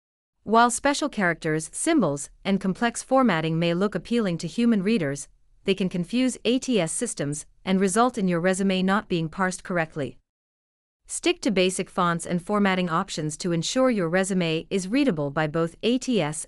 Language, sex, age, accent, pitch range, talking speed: English, female, 40-59, American, 155-220 Hz, 155 wpm